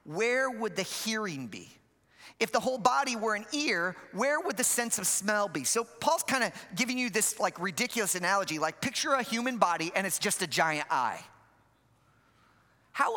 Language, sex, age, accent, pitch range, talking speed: English, male, 40-59, American, 185-255 Hz, 185 wpm